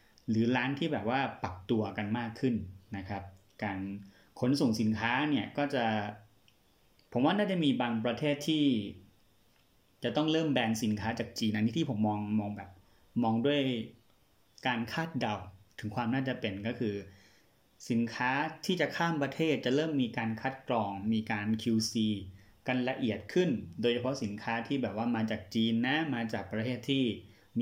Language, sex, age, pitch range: Thai, male, 30-49, 105-130 Hz